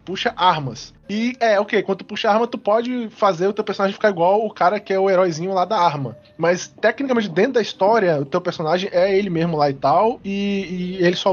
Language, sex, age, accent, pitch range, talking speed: Portuguese, male, 20-39, Brazilian, 170-220 Hz, 240 wpm